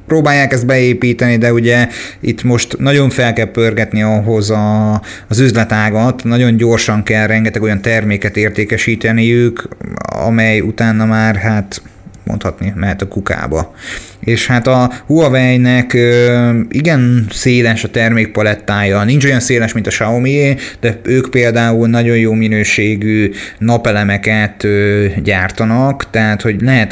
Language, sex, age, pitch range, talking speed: Hungarian, male, 30-49, 105-120 Hz, 125 wpm